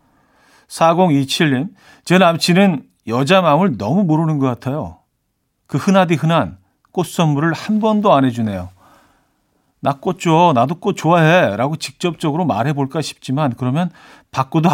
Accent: native